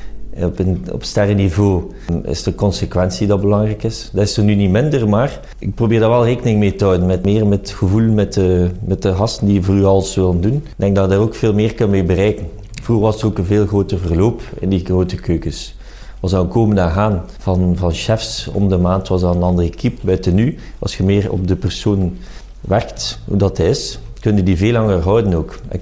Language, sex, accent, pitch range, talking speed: Dutch, male, Dutch, 90-110 Hz, 230 wpm